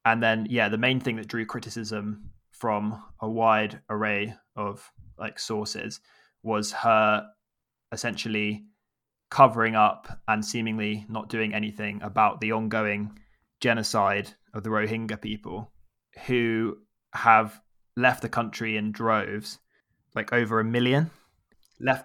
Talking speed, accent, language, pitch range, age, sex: 125 wpm, British, English, 105-115 Hz, 20-39, male